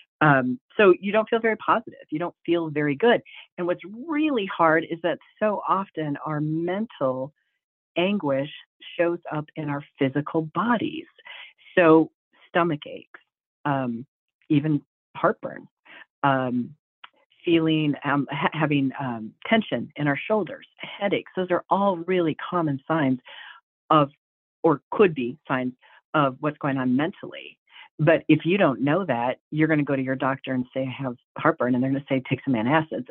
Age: 40-59